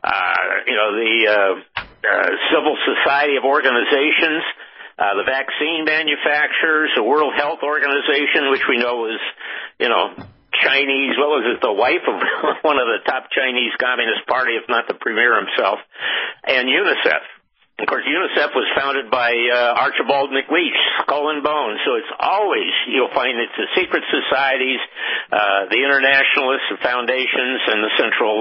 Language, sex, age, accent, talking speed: English, male, 60-79, American, 160 wpm